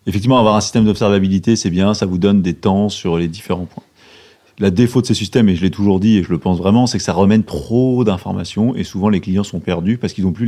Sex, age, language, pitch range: male, 30-49, French, 95-120 Hz